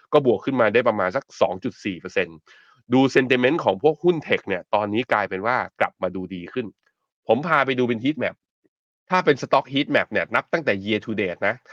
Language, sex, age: Thai, male, 20-39